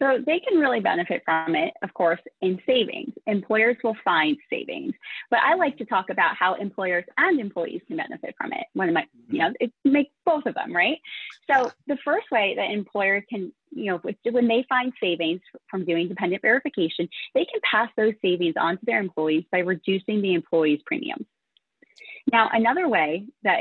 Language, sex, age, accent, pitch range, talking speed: English, female, 20-39, American, 190-260 Hz, 190 wpm